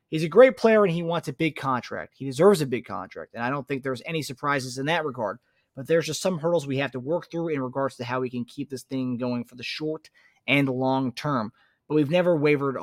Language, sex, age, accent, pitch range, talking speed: English, male, 30-49, American, 125-145 Hz, 255 wpm